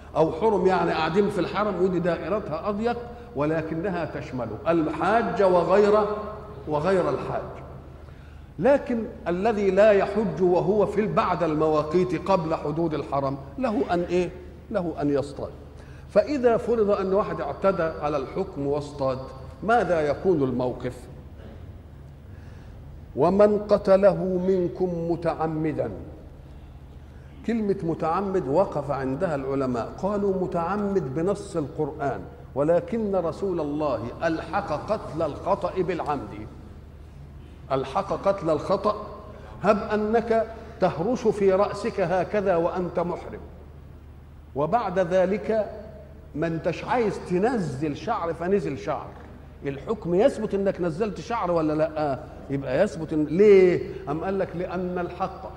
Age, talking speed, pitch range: 50-69, 105 wpm, 140-200 Hz